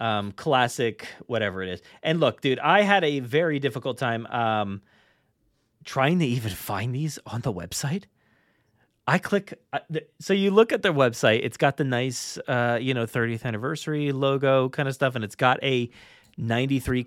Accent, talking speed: American, 180 wpm